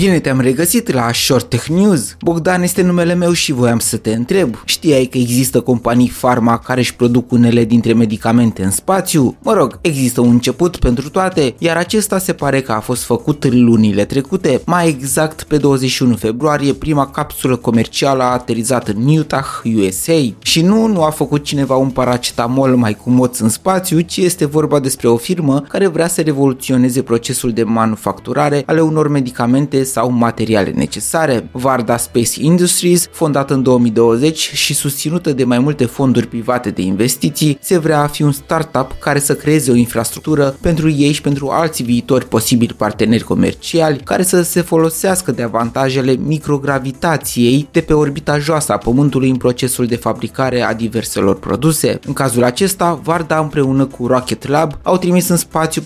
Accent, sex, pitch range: native, male, 120-155 Hz